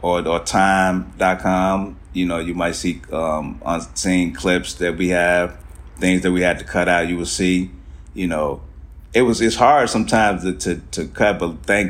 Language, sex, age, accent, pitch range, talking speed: English, male, 30-49, American, 80-100 Hz, 185 wpm